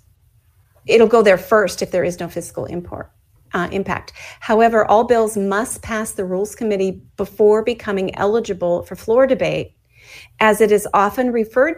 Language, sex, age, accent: English, female, 40-59, American